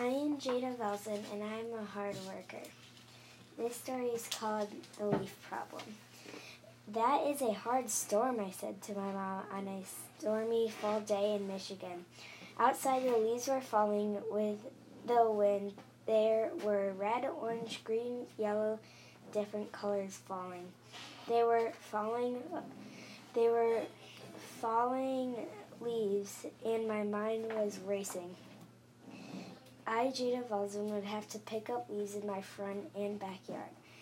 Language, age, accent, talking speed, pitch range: English, 10-29, American, 135 wpm, 205-235 Hz